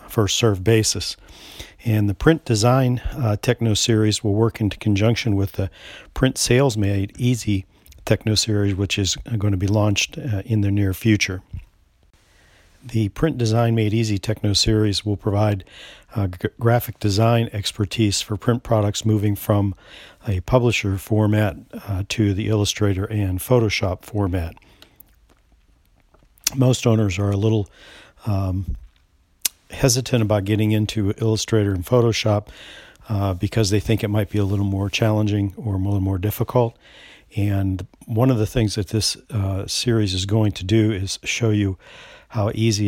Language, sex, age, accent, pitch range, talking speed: English, male, 50-69, American, 100-110 Hz, 150 wpm